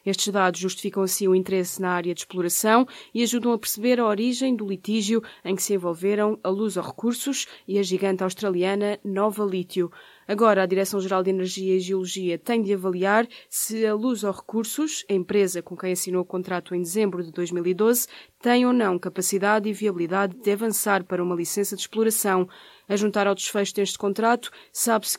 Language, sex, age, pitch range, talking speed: Portuguese, female, 20-39, 190-220 Hz, 185 wpm